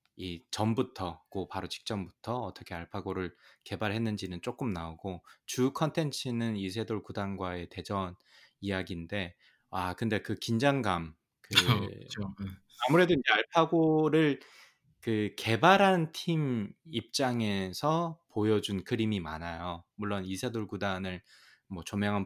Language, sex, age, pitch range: Korean, male, 20-39, 95-115 Hz